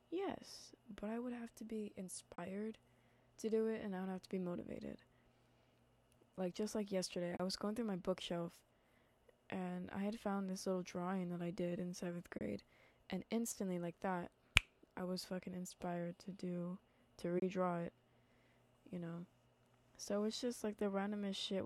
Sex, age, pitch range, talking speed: female, 20-39, 175-210 Hz, 175 wpm